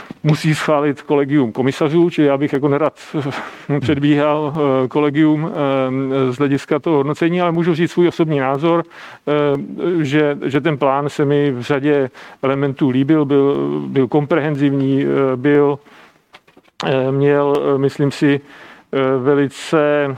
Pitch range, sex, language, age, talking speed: 140-155 Hz, male, Slovak, 40-59, 115 wpm